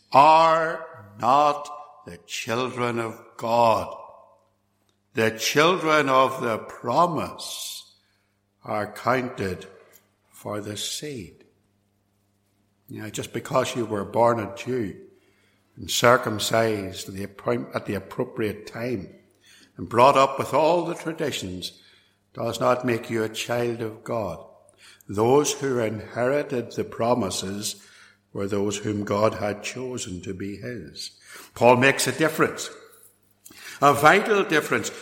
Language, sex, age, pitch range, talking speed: English, male, 60-79, 110-160 Hz, 110 wpm